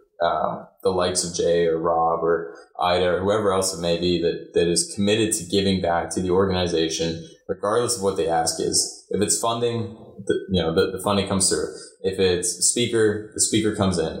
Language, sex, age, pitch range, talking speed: English, male, 20-39, 85-110 Hz, 205 wpm